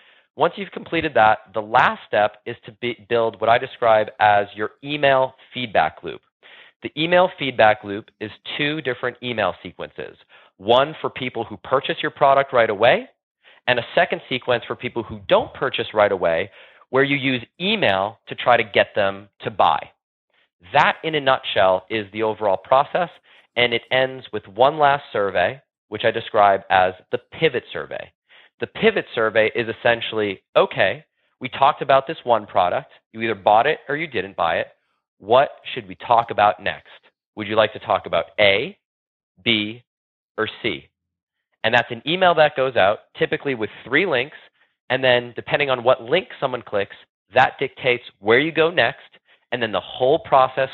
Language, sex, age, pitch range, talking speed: English, male, 30-49, 110-140 Hz, 175 wpm